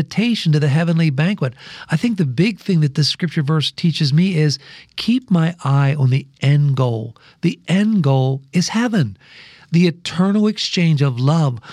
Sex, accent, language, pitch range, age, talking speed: male, American, English, 140-180 Hz, 50-69, 170 wpm